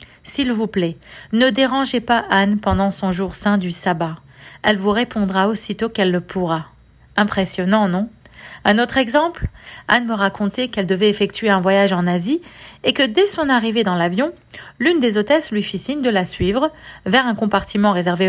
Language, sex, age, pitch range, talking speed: French, female, 40-59, 185-230 Hz, 180 wpm